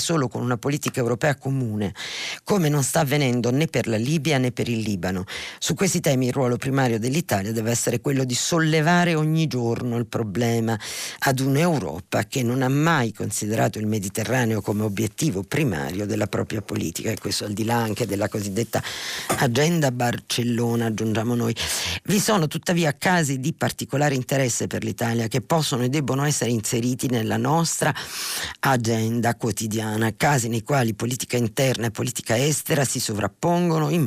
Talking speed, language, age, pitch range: 160 wpm, Italian, 50-69, 105-135 Hz